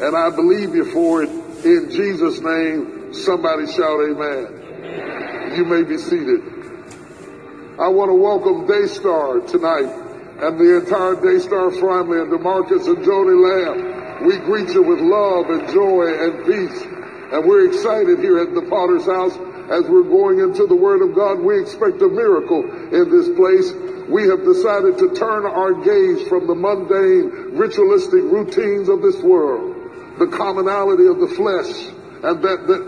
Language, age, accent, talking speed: English, 60-79, American, 160 wpm